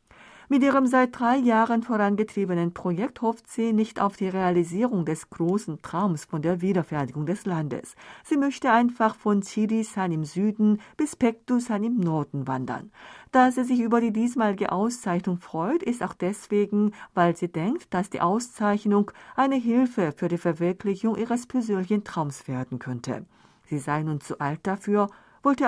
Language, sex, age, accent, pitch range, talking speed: German, female, 50-69, German, 170-240 Hz, 155 wpm